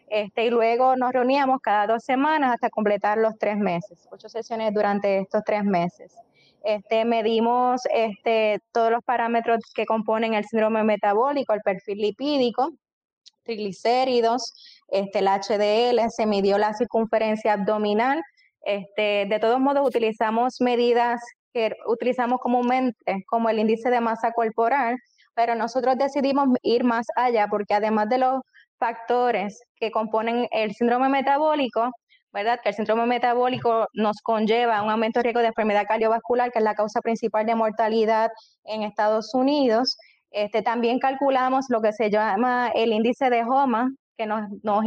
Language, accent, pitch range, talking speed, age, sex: Spanish, American, 215-245 Hz, 150 wpm, 20-39, female